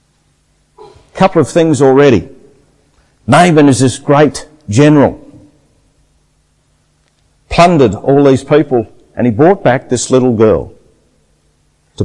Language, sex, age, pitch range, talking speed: English, male, 50-69, 100-145 Hz, 105 wpm